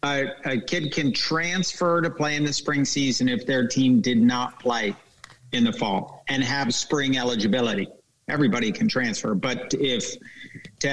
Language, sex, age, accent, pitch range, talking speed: English, male, 50-69, American, 125-170 Hz, 165 wpm